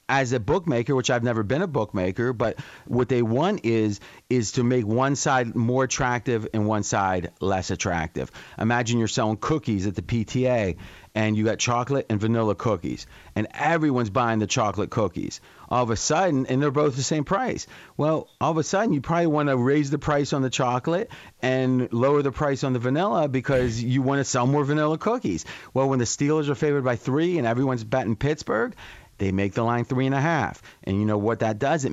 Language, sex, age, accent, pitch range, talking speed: English, male, 40-59, American, 110-145 Hz, 210 wpm